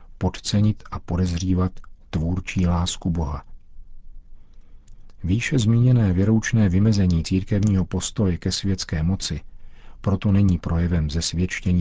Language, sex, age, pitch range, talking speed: Czech, male, 50-69, 85-100 Hz, 95 wpm